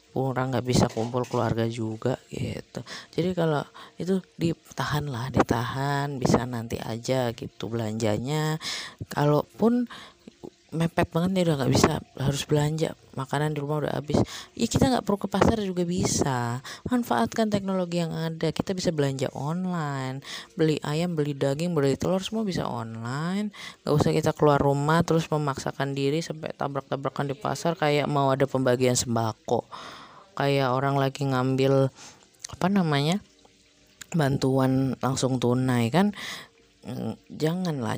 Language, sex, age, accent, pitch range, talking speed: Indonesian, female, 20-39, native, 135-185 Hz, 135 wpm